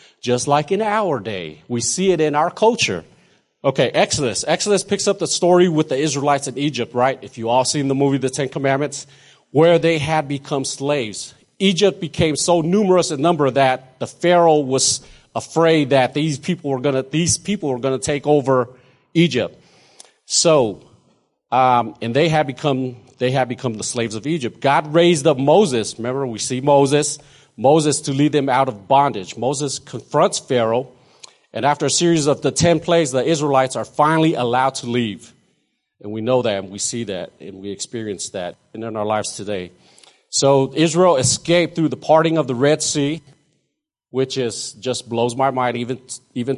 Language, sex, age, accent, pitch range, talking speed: English, male, 40-59, American, 125-160 Hz, 180 wpm